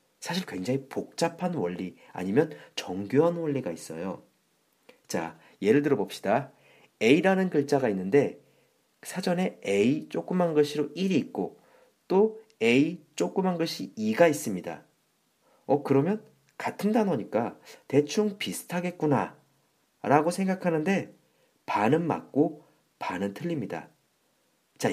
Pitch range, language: 135-205 Hz, Korean